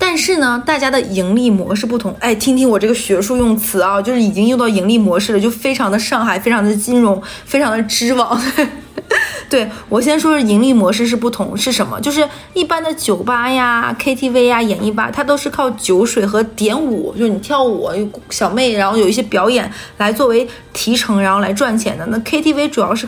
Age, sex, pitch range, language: 20-39, female, 210-275 Hz, Chinese